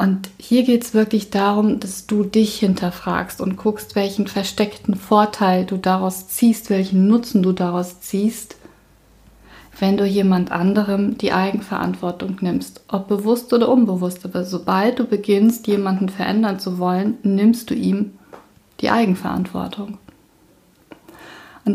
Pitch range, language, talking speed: 185-215 Hz, German, 130 wpm